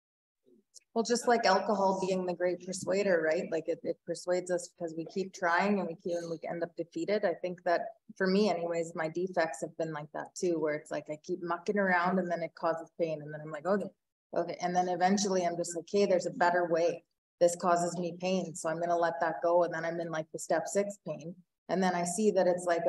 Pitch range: 165-185 Hz